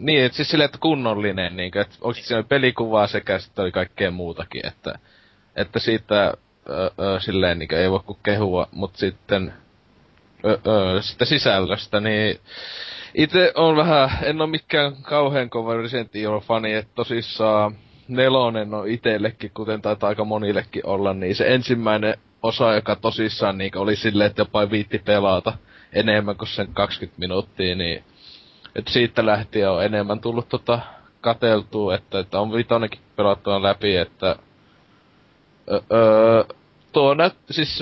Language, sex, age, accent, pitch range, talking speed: Finnish, male, 20-39, native, 100-125 Hz, 135 wpm